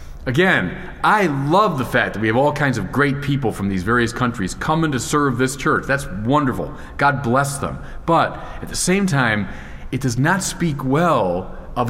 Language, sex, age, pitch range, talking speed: English, male, 40-59, 95-145 Hz, 190 wpm